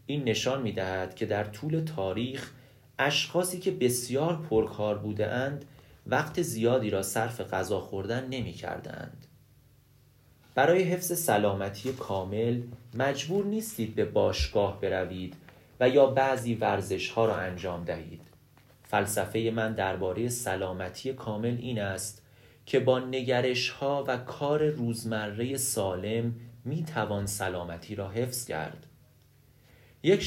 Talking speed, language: 110 wpm, Persian